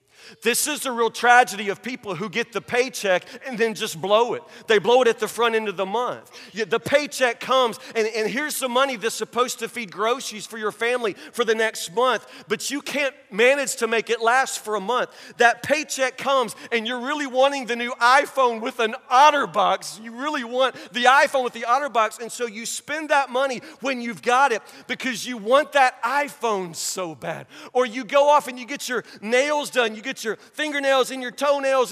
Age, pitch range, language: 40-59, 230-275 Hz, English